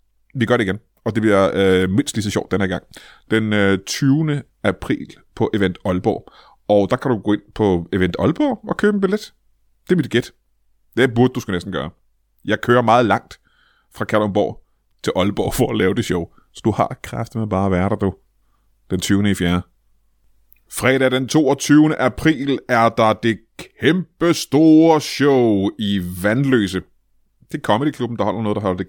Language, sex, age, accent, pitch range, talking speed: Danish, male, 30-49, native, 100-135 Hz, 195 wpm